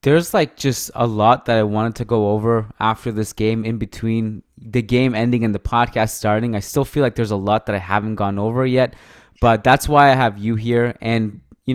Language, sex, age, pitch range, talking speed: English, male, 20-39, 105-125 Hz, 230 wpm